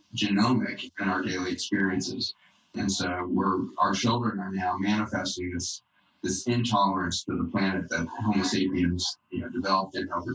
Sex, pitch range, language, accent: male, 95-105 Hz, English, American